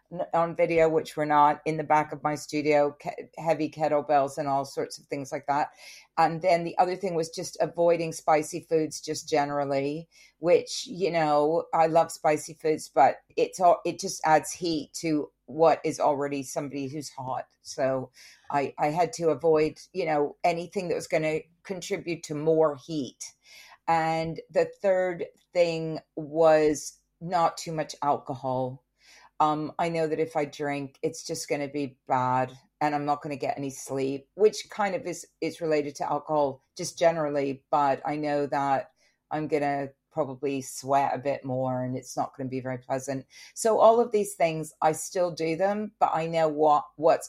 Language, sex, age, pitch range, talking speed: English, female, 50-69, 145-170 Hz, 185 wpm